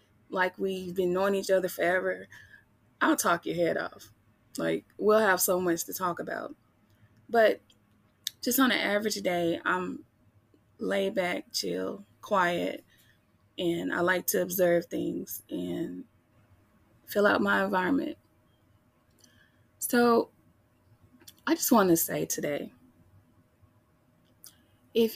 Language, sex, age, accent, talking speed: English, female, 20-39, American, 120 wpm